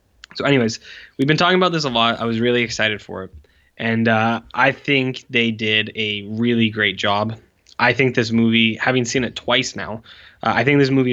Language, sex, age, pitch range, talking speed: English, male, 10-29, 105-120 Hz, 210 wpm